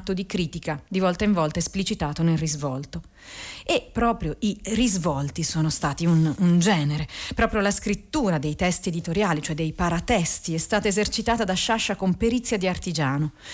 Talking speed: 160 wpm